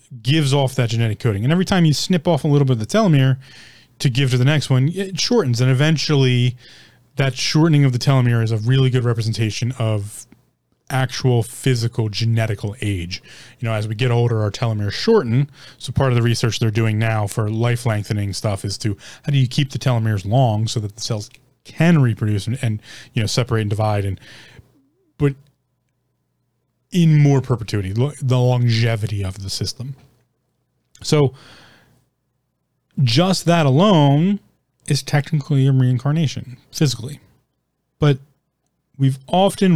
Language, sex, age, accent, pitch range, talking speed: English, male, 30-49, American, 115-140 Hz, 160 wpm